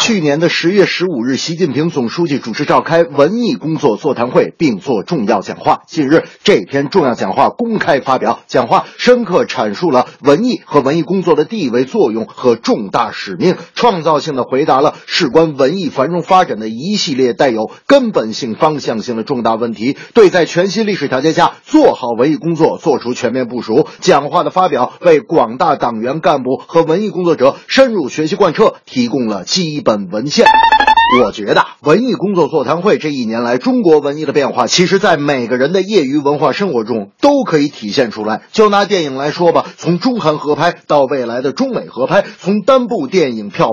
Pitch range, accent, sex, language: 140-220 Hz, native, male, Chinese